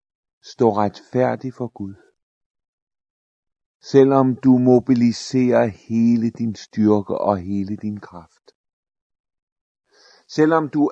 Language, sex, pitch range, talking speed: Danish, male, 100-140 Hz, 90 wpm